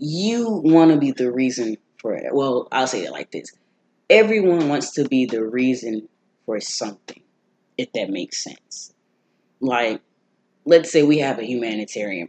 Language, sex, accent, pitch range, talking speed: English, female, American, 115-150 Hz, 160 wpm